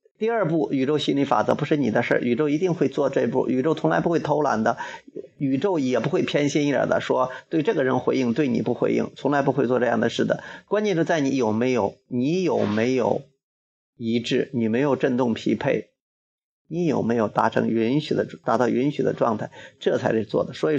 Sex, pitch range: male, 115-140 Hz